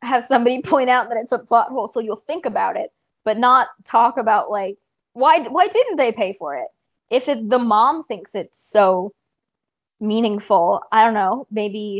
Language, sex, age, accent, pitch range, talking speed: English, female, 20-39, American, 200-265 Hz, 190 wpm